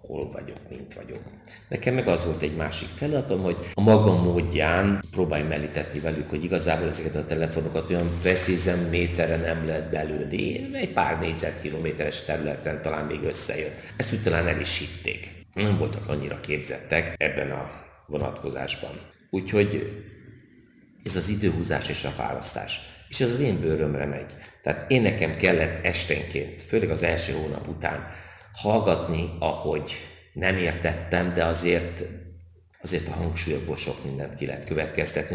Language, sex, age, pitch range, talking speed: Hungarian, male, 60-79, 80-95 Hz, 145 wpm